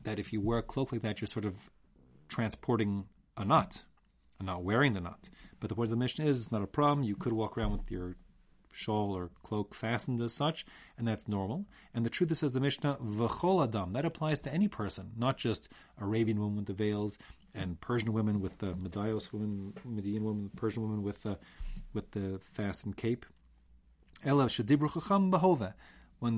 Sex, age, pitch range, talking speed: male, 40-59, 95-120 Hz, 195 wpm